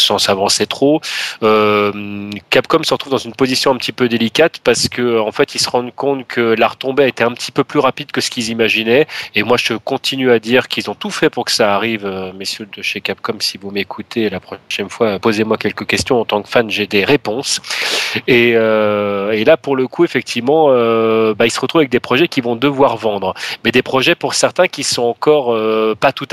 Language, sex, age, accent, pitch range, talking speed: French, male, 30-49, French, 110-135 Hz, 235 wpm